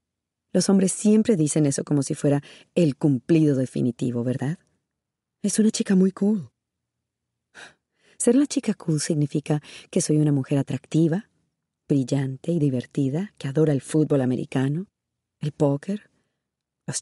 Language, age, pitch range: Spanish, 40-59, 140-175 Hz